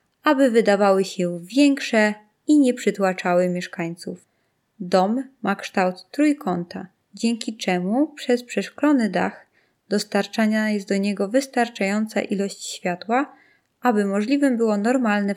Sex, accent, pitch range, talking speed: female, native, 185-260 Hz, 110 wpm